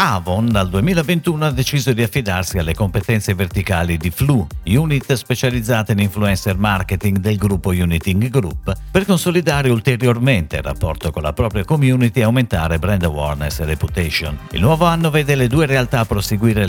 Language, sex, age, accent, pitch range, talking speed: Italian, male, 50-69, native, 90-140 Hz, 160 wpm